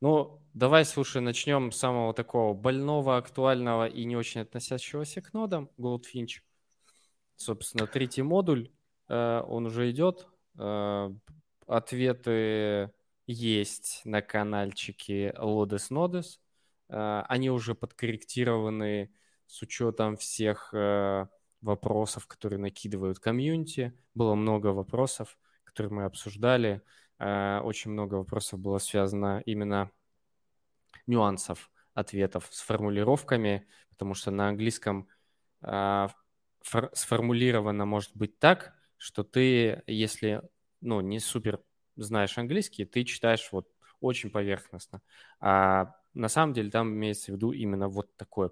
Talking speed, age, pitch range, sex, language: 105 wpm, 20-39, 100-125 Hz, male, Russian